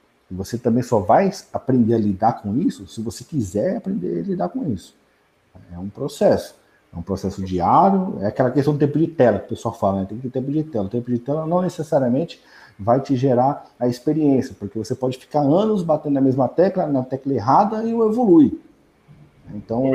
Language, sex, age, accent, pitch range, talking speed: Portuguese, male, 50-69, Brazilian, 105-145 Hz, 210 wpm